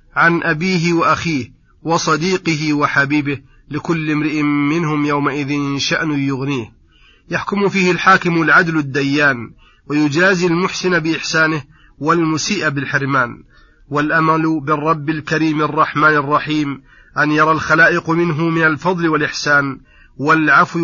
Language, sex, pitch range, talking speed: Arabic, male, 145-170 Hz, 100 wpm